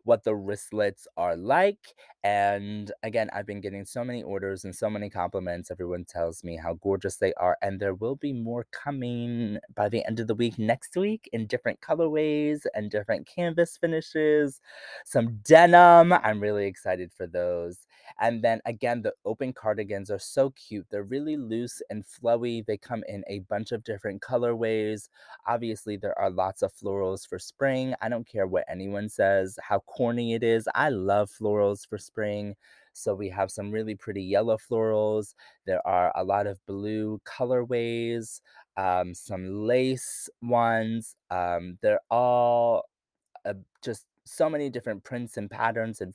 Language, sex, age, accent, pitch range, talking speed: English, male, 20-39, American, 100-120 Hz, 165 wpm